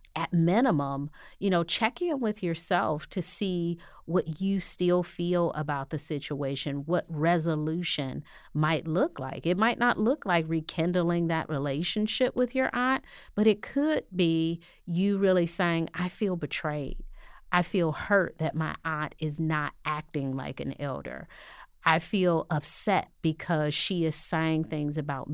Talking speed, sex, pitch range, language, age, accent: 150 wpm, female, 145-175 Hz, English, 30-49, American